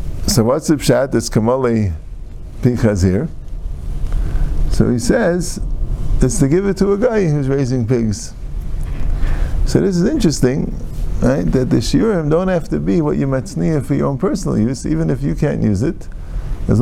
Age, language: 50-69, English